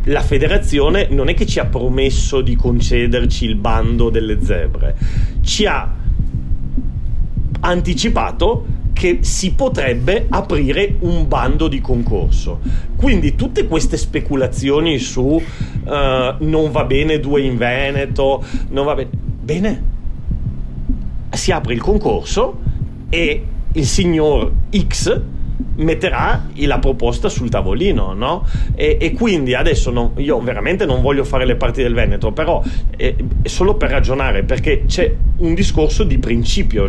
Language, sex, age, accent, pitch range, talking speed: Italian, male, 40-59, native, 105-140 Hz, 130 wpm